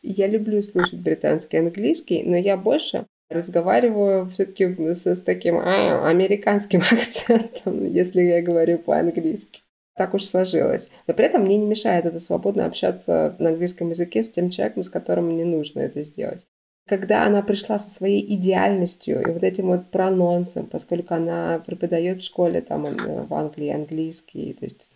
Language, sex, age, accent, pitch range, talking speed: Russian, female, 20-39, native, 170-205 Hz, 155 wpm